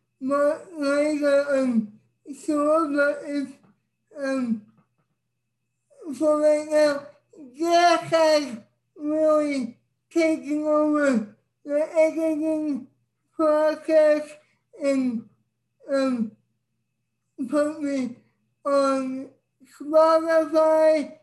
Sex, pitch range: male, 265-300 Hz